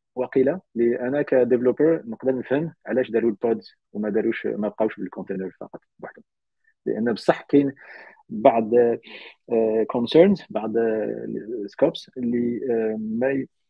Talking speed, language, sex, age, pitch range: 100 wpm, Arabic, male, 30-49, 105-130 Hz